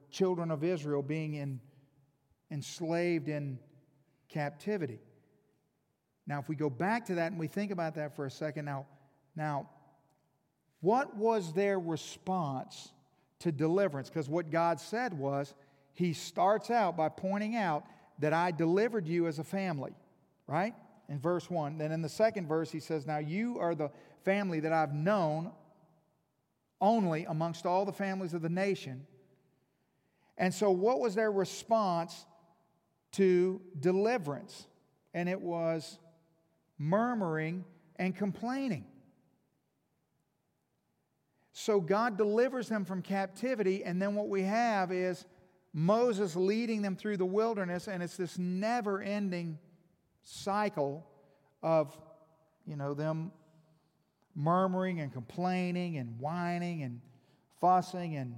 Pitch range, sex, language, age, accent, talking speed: 155-195 Hz, male, English, 40-59, American, 130 wpm